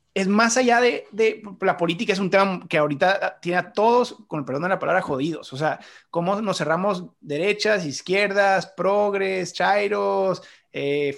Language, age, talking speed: Spanish, 30-49, 170 wpm